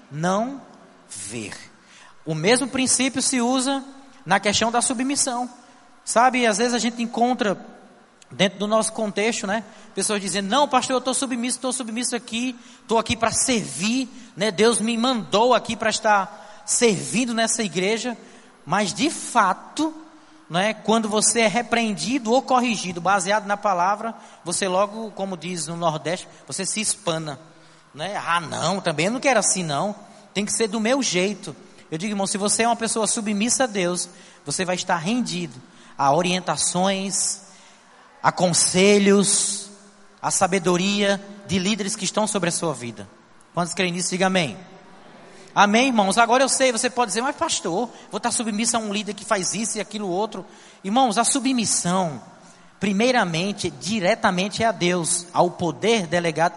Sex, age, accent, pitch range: male, 20-39, Brazilian, 185-235 Hz